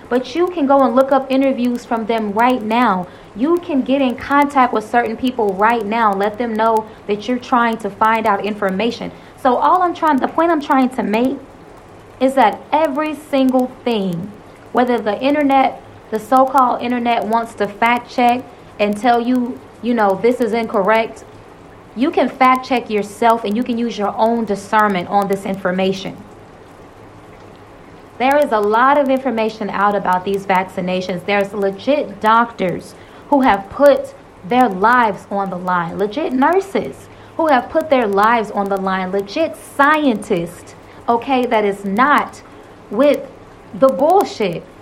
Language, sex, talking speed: English, female, 160 wpm